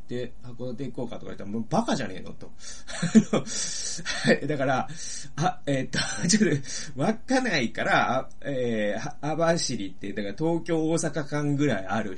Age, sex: 30-49, male